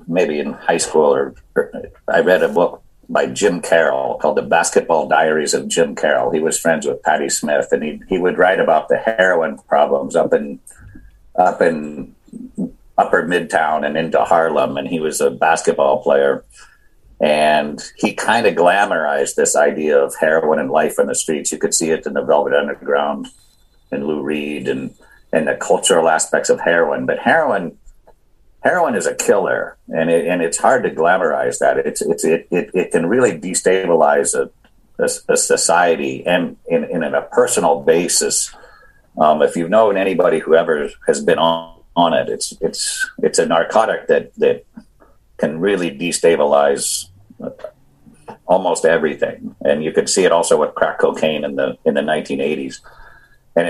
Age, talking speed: 50-69, 170 wpm